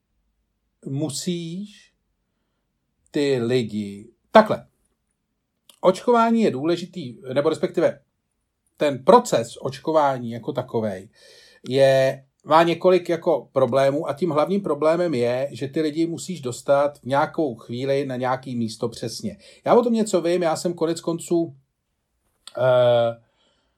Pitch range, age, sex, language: 125-160 Hz, 40-59, male, Czech